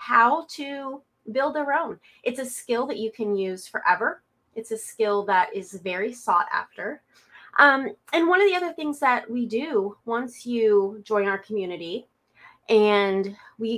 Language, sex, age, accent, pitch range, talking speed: English, female, 30-49, American, 200-245 Hz, 165 wpm